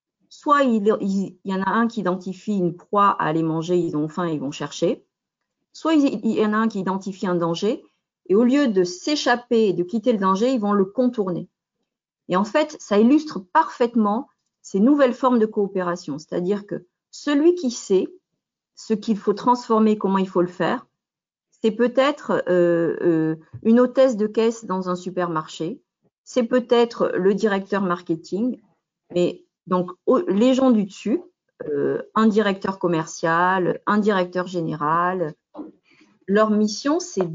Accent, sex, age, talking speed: French, female, 50-69, 160 wpm